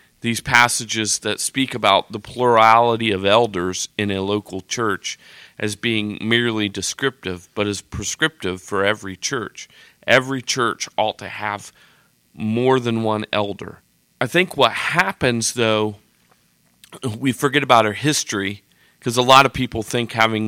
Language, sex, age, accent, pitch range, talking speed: English, male, 40-59, American, 105-130 Hz, 145 wpm